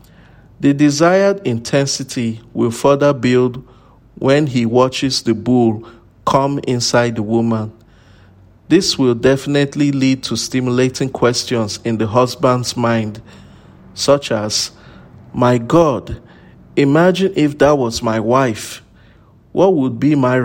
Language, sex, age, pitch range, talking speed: English, male, 40-59, 115-135 Hz, 115 wpm